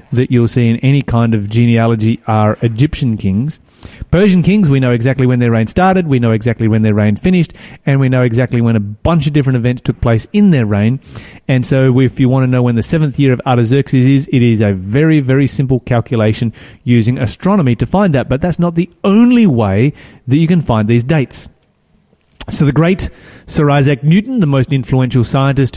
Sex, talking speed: male, 210 wpm